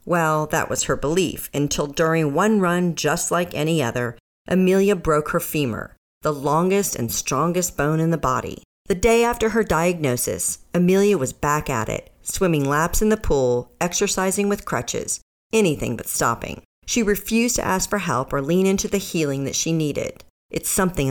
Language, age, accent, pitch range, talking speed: English, 40-59, American, 140-195 Hz, 175 wpm